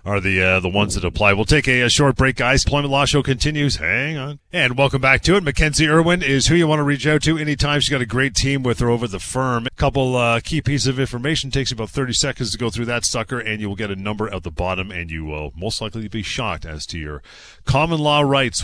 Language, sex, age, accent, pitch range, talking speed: English, male, 40-59, American, 100-135 Hz, 275 wpm